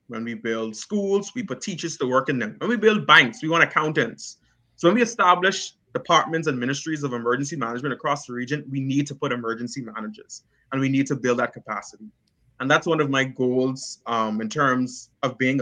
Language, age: English, 20-39